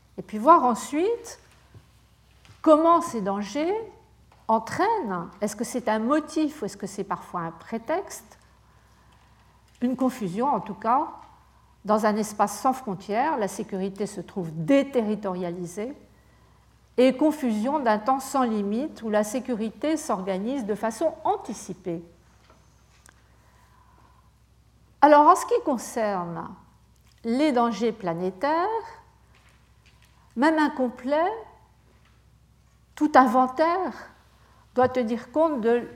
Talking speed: 110 wpm